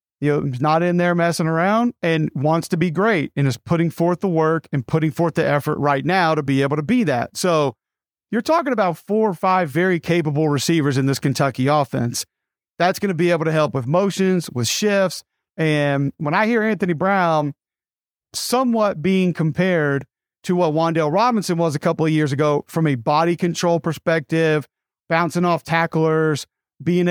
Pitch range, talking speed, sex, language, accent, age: 150-185 Hz, 190 wpm, male, English, American, 40-59